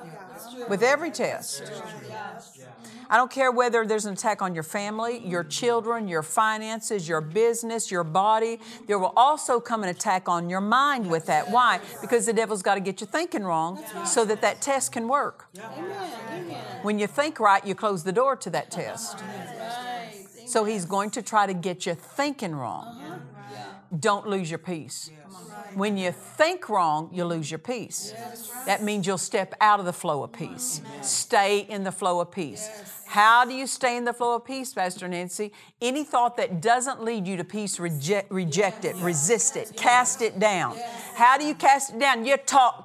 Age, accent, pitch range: 50-69, American, 190-240 Hz